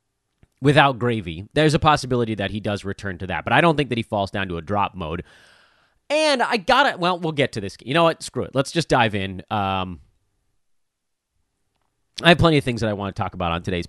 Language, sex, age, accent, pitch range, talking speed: English, male, 30-49, American, 95-145 Hz, 240 wpm